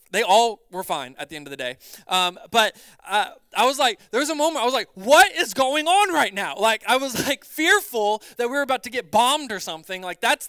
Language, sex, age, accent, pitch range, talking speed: English, male, 20-39, American, 180-230 Hz, 255 wpm